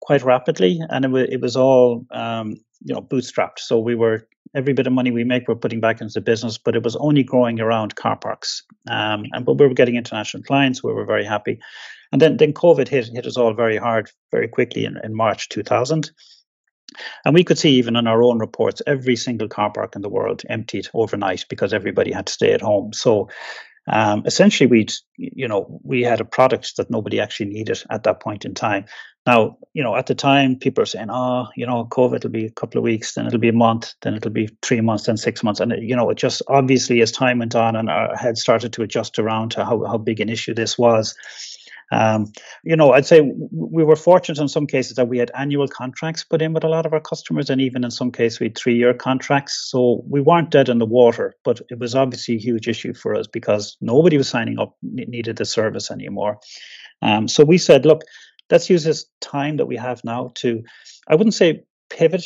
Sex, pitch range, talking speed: male, 115-140 Hz, 230 wpm